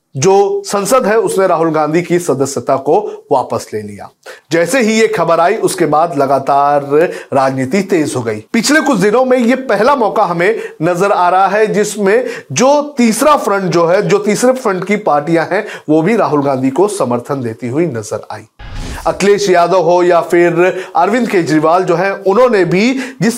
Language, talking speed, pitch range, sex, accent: Hindi, 180 wpm, 170-250 Hz, male, native